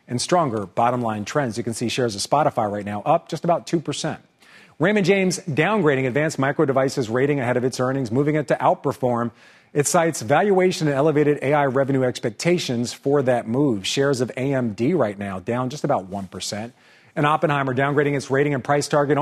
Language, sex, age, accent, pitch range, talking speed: English, male, 40-59, American, 125-155 Hz, 185 wpm